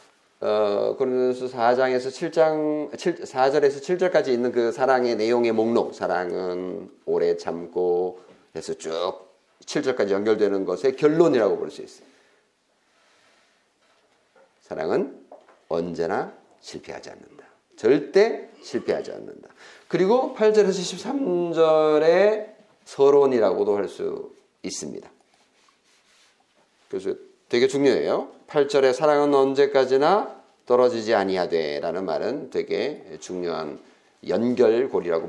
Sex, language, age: male, Korean, 40-59